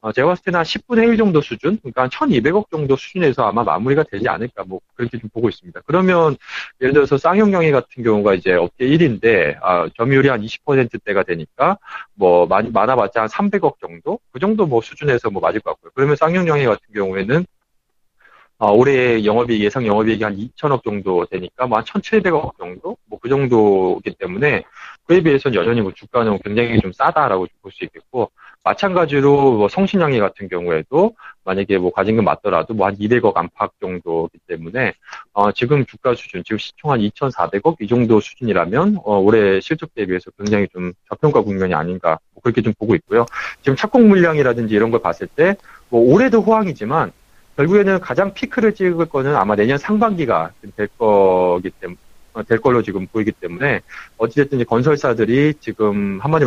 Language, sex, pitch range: Korean, male, 105-155 Hz